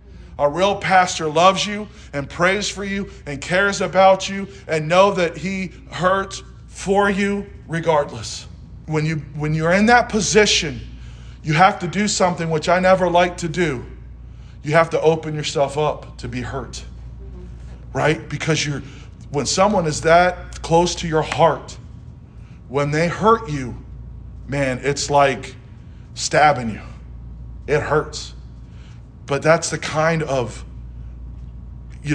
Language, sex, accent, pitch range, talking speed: English, male, American, 120-185 Hz, 140 wpm